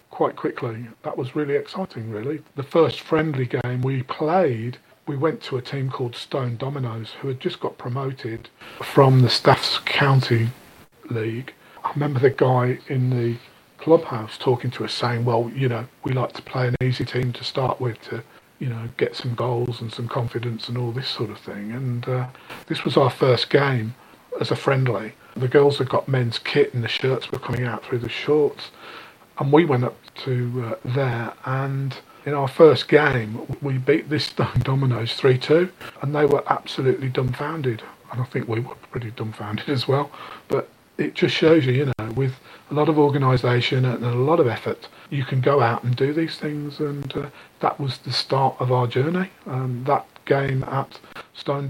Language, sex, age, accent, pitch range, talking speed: English, male, 40-59, British, 120-145 Hz, 195 wpm